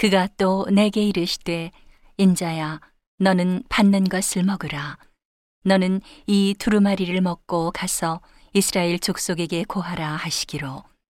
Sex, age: female, 40-59